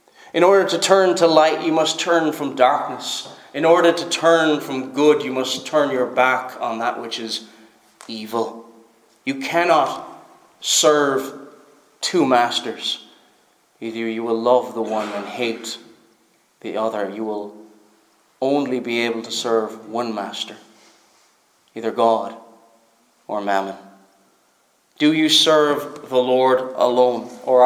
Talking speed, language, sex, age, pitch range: 135 wpm, English, male, 30-49, 115-150 Hz